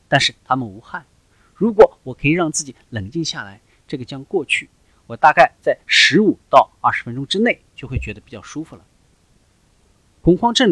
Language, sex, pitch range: Chinese, male, 110-165 Hz